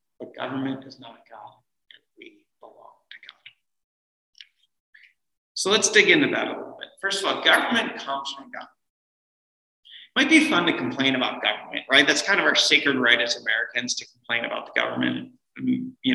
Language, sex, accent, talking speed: English, male, American, 180 wpm